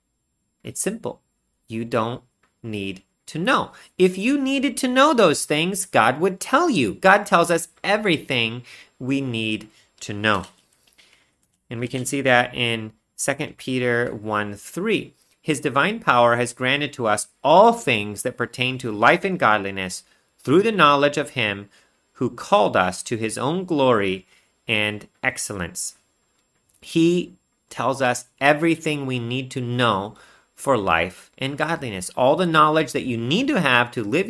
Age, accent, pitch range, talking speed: 30-49, American, 110-165 Hz, 150 wpm